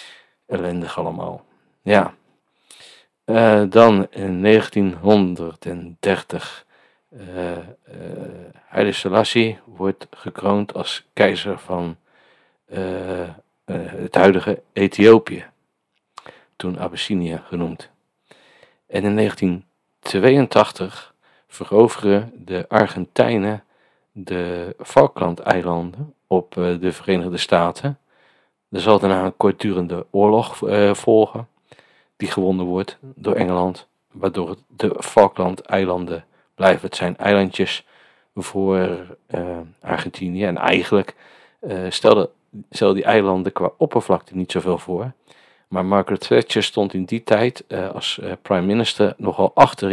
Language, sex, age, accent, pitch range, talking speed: Dutch, male, 50-69, Dutch, 90-105 Hz, 100 wpm